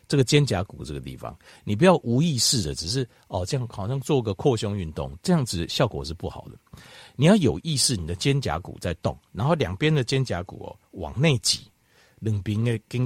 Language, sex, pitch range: Chinese, male, 100-140 Hz